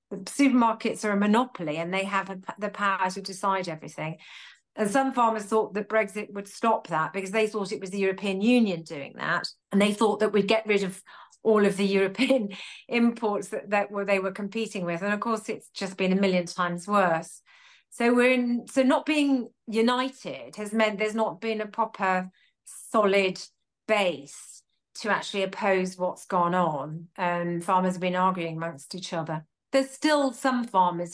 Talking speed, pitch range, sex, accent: 190 wpm, 180-220 Hz, female, British